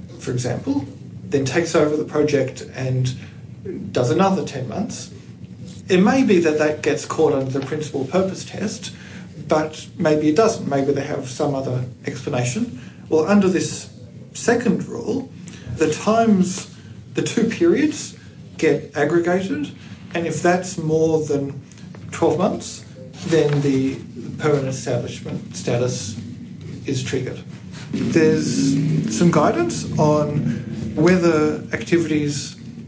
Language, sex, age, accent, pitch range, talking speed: English, male, 50-69, Australian, 135-170 Hz, 120 wpm